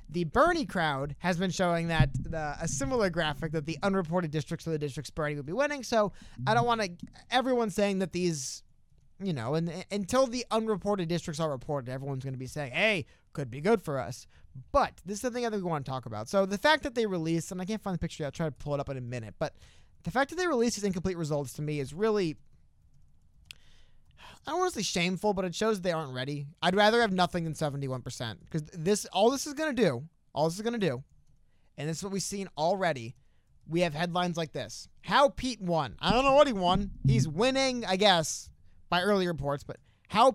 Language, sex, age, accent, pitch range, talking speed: English, male, 20-39, American, 145-210 Hz, 240 wpm